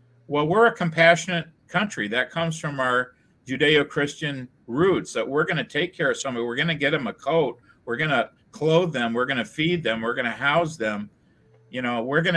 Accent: American